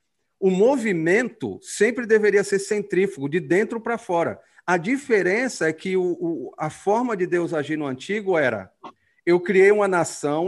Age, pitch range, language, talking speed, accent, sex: 40-59, 150-205 Hz, Portuguese, 150 wpm, Brazilian, male